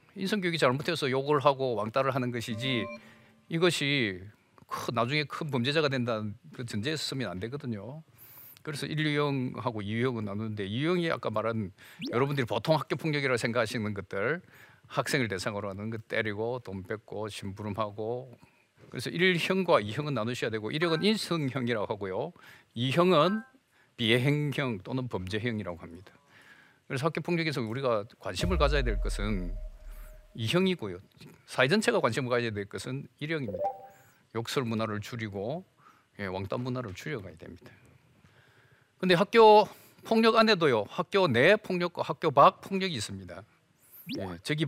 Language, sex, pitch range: Korean, male, 110-150 Hz